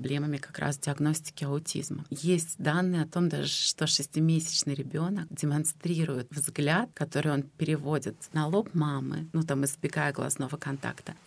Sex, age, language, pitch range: female, 30-49, Russian, 145-180 Hz